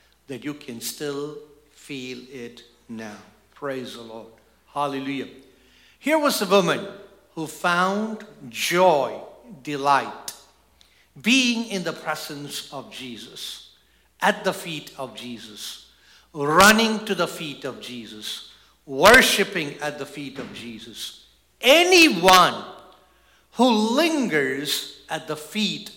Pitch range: 130-200 Hz